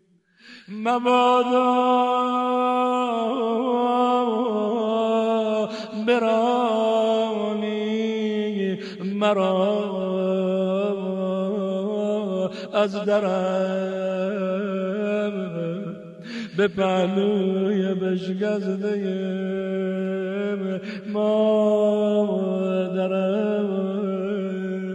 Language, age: Persian, 50-69